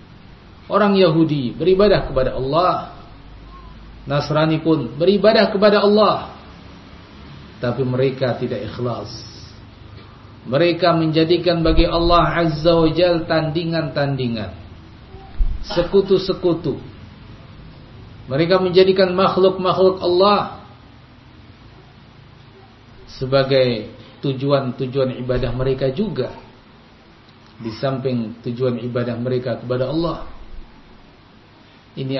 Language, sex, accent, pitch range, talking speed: Indonesian, male, native, 115-165 Hz, 75 wpm